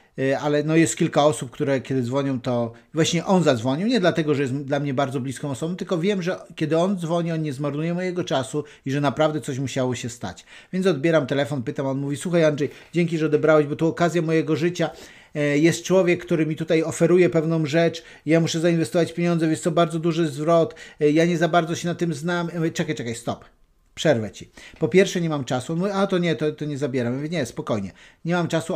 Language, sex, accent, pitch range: Polish, male, native, 140-170 Hz